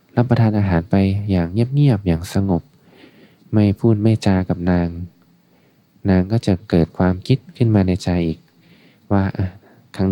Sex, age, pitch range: male, 20-39, 90-105 Hz